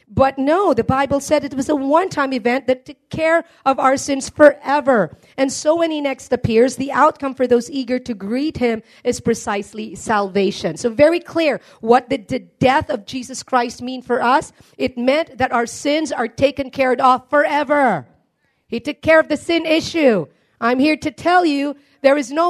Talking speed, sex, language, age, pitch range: 190 wpm, female, English, 40-59, 255-320 Hz